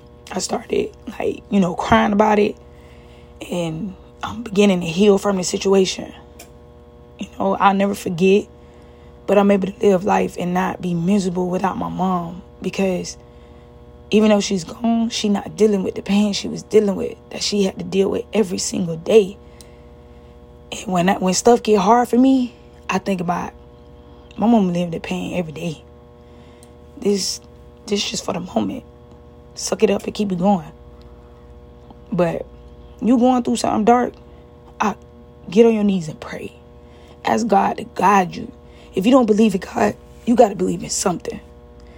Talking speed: 170 wpm